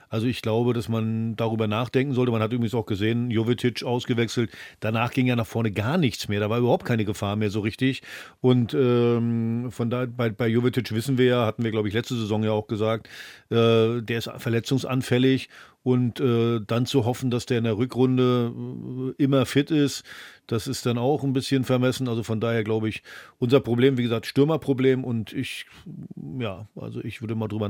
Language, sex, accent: German, male, German